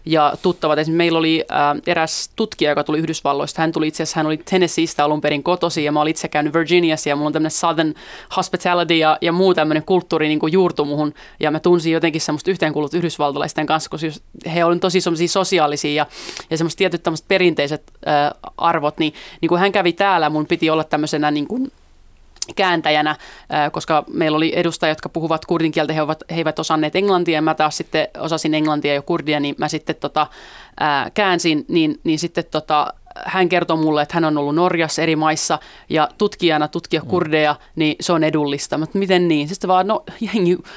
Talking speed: 190 wpm